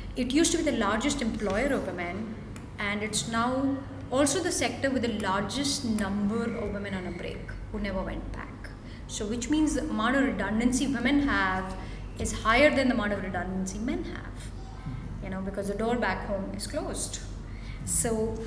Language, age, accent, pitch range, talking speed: English, 20-39, Indian, 200-270 Hz, 180 wpm